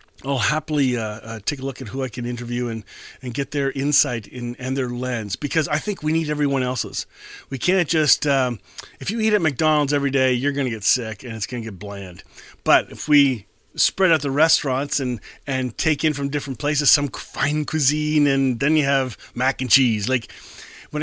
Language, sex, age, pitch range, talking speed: English, male, 40-59, 125-160 Hz, 215 wpm